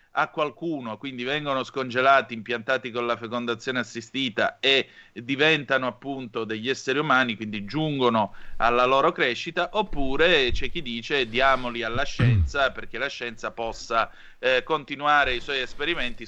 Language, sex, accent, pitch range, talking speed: Italian, male, native, 125-160 Hz, 135 wpm